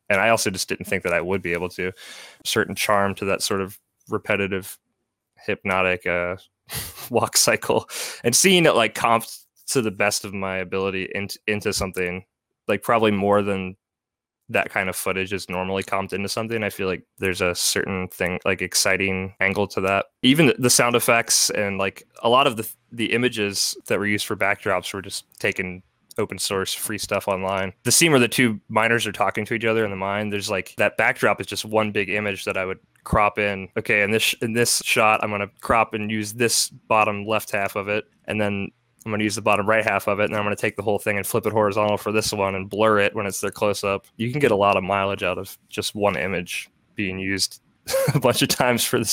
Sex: male